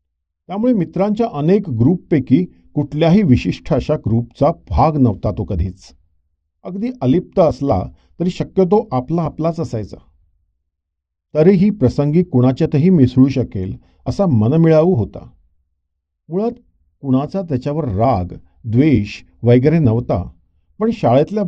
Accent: native